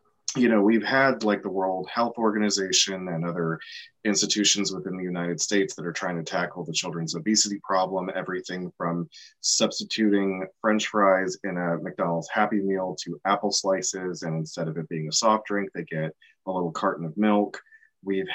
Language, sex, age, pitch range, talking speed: English, male, 20-39, 85-105 Hz, 175 wpm